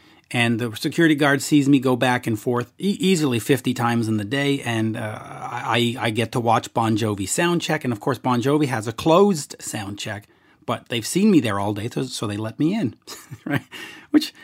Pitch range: 115-155 Hz